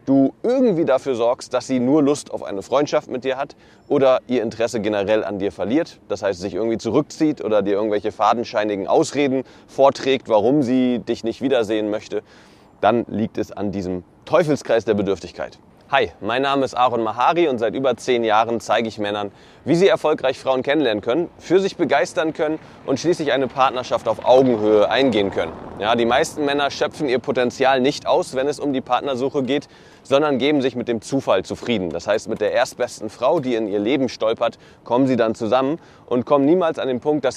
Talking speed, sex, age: 195 wpm, male, 30-49